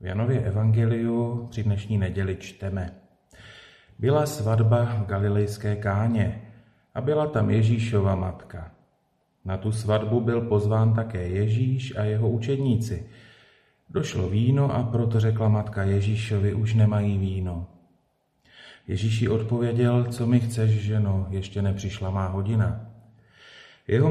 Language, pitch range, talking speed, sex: Slovak, 100-115 Hz, 120 wpm, male